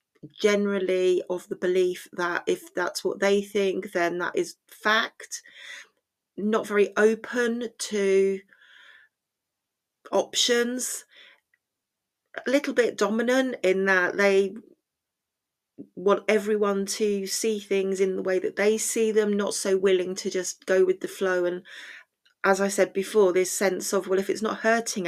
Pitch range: 185-225 Hz